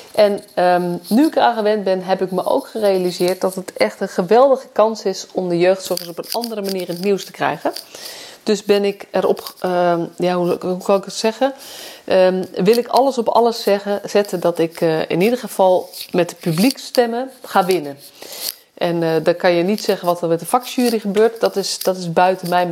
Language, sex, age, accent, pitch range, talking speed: Dutch, female, 30-49, Dutch, 180-225 Hz, 215 wpm